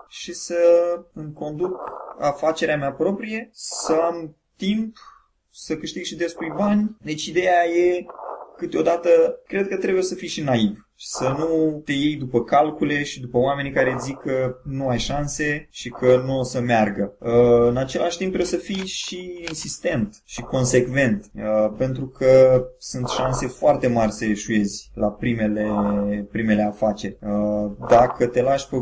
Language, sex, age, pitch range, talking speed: Romanian, male, 20-39, 120-150 Hz, 155 wpm